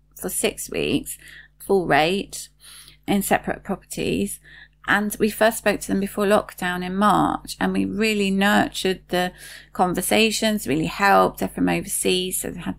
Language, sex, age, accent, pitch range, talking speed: English, female, 30-49, British, 170-205 Hz, 150 wpm